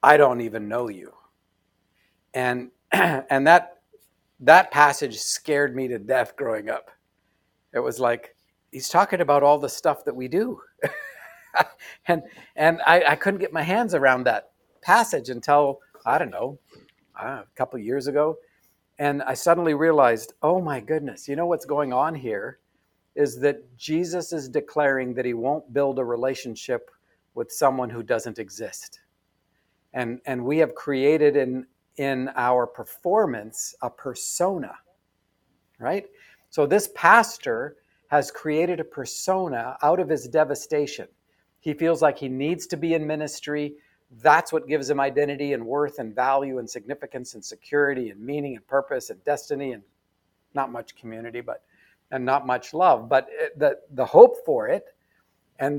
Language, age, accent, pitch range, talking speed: English, 50-69, American, 125-155 Hz, 155 wpm